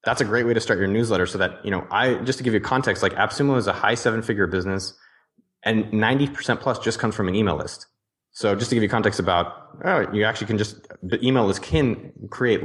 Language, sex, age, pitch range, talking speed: English, male, 20-39, 105-135 Hz, 240 wpm